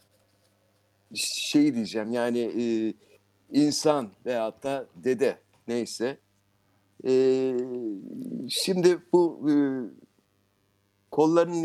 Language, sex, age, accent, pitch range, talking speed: Turkish, male, 50-69, native, 105-155 Hz, 70 wpm